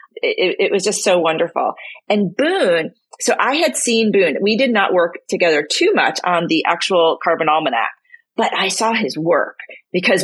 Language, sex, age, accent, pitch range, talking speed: English, female, 40-59, American, 170-230 Hz, 180 wpm